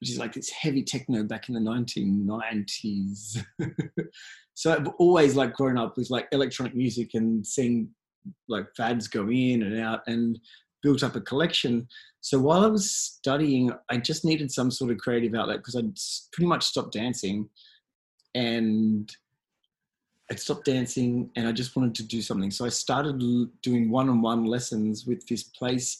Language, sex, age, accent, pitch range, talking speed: English, male, 20-39, Australian, 115-130 Hz, 170 wpm